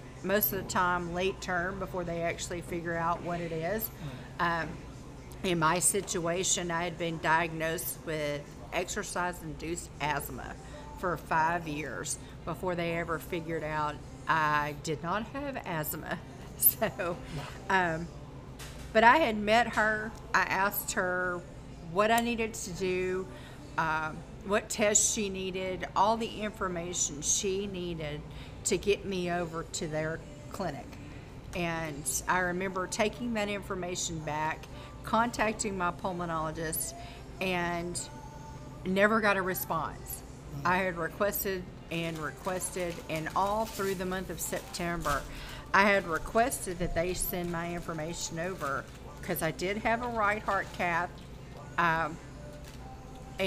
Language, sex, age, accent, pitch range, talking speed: English, female, 50-69, American, 150-190 Hz, 130 wpm